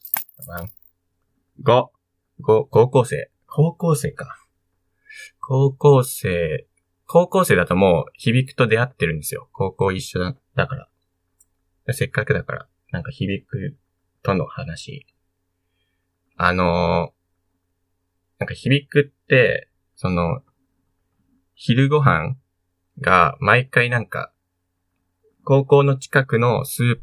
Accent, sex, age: native, male, 20-39